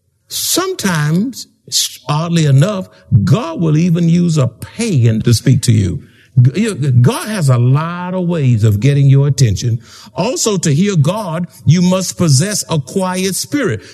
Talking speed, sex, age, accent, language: 140 wpm, male, 60-79, American, English